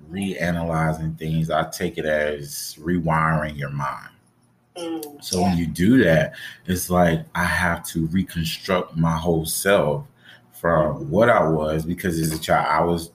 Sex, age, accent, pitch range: male, 30-49, American, 85-120 Hz